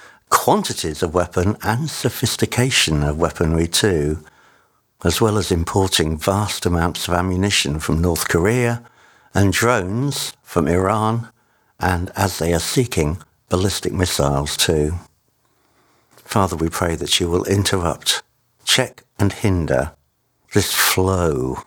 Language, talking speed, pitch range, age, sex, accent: English, 120 wpm, 85-115 Hz, 60-79, male, British